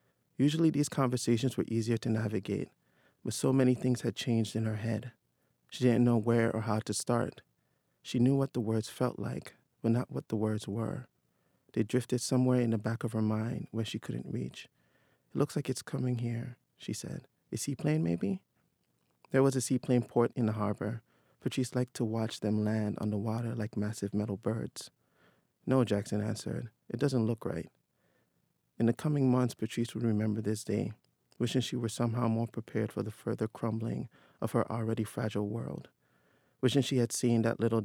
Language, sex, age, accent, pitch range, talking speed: English, male, 30-49, American, 105-120 Hz, 190 wpm